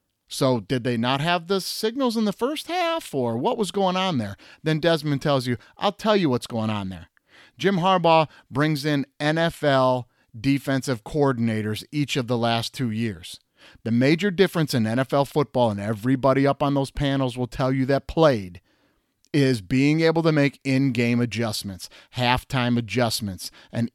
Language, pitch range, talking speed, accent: English, 115-145 Hz, 170 wpm, American